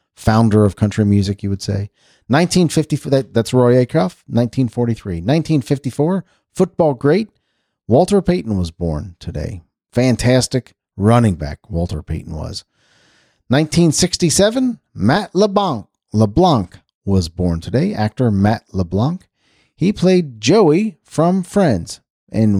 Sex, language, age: male, English, 40-59